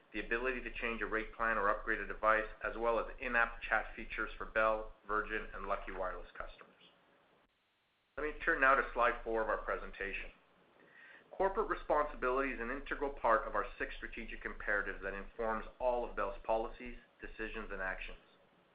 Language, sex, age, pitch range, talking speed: English, male, 40-59, 105-125 Hz, 175 wpm